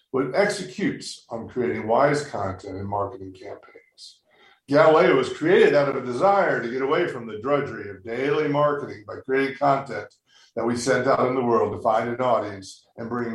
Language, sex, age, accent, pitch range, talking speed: English, male, 50-69, American, 110-155 Hz, 185 wpm